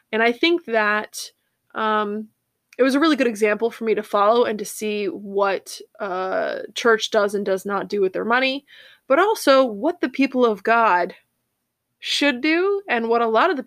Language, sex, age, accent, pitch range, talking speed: English, female, 20-39, American, 210-260 Hz, 195 wpm